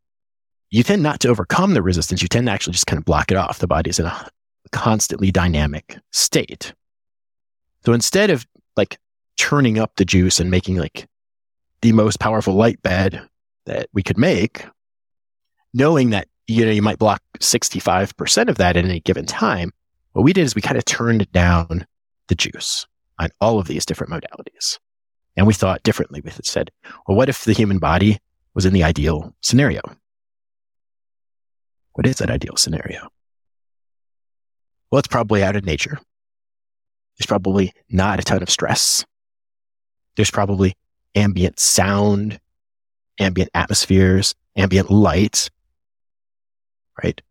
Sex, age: male, 30-49